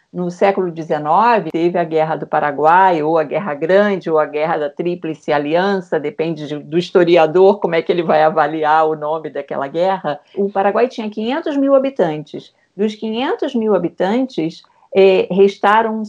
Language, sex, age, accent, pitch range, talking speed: Portuguese, female, 50-69, Brazilian, 165-205 Hz, 155 wpm